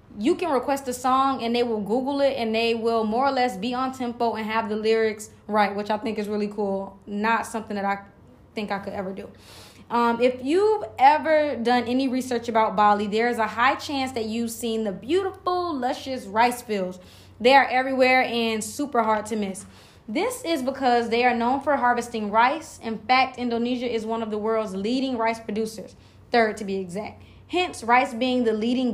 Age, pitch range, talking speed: 20-39, 220-255 Hz, 205 wpm